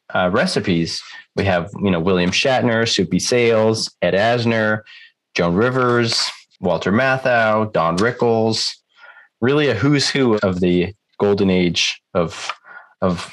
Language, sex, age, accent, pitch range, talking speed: English, male, 30-49, American, 95-125 Hz, 125 wpm